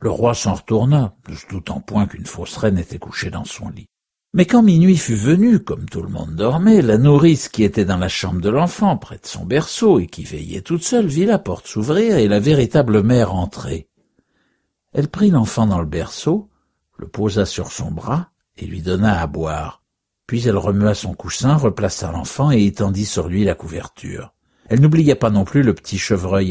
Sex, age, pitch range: male, 60-79, 95-145 Hz